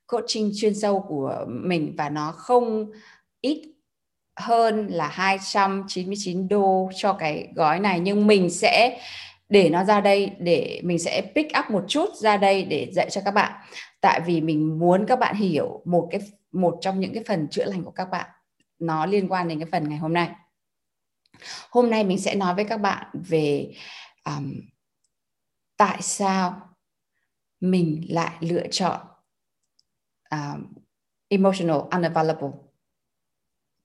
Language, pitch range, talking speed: Vietnamese, 170-215 Hz, 150 wpm